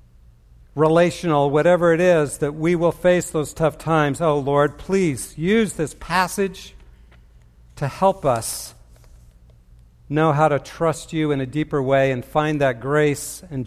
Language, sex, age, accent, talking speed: English, male, 60-79, American, 150 wpm